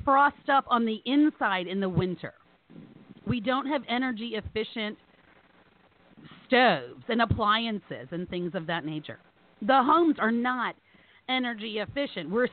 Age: 40-59